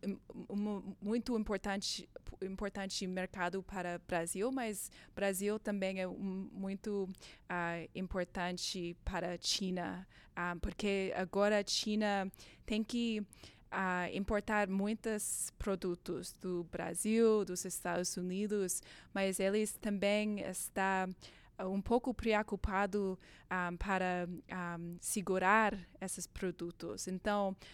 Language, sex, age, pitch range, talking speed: Portuguese, female, 20-39, 180-205 Hz, 110 wpm